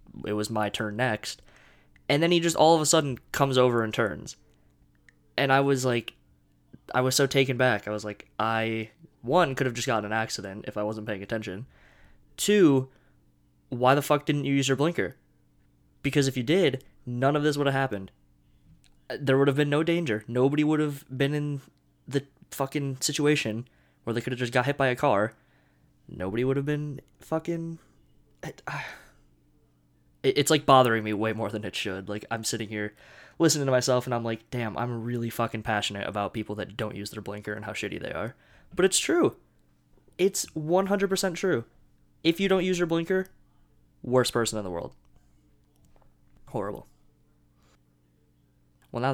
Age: 20-39